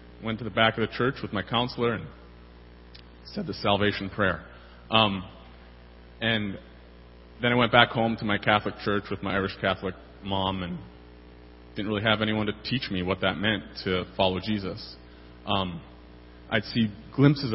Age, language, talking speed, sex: 30-49, English, 170 wpm, male